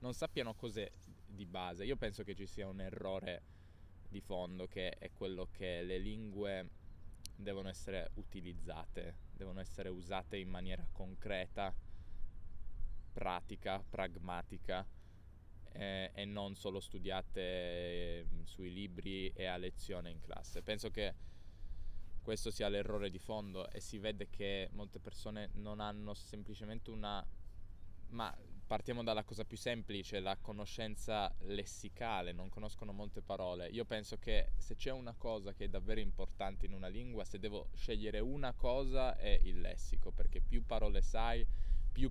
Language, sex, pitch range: Italian, male, 90-105 Hz